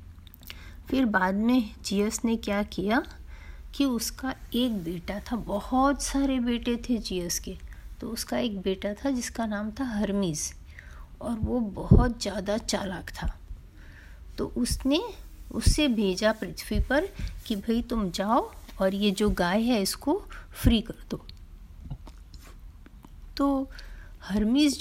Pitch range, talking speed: 195-245 Hz, 130 wpm